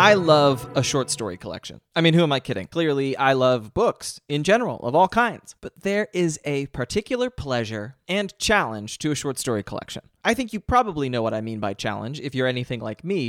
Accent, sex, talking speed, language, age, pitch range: American, male, 220 wpm, English, 30-49, 125-170 Hz